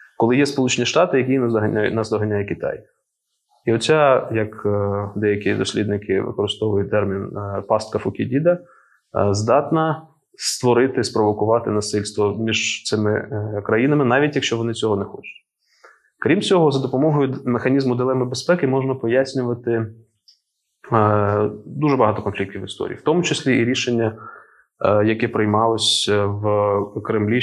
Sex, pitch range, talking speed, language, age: male, 105-130 Hz, 120 wpm, Ukrainian, 20-39